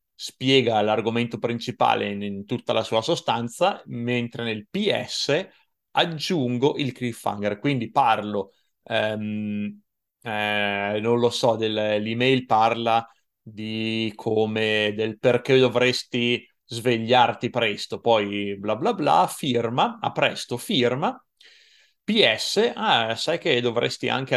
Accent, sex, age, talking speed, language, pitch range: native, male, 30-49, 110 wpm, Italian, 110-135 Hz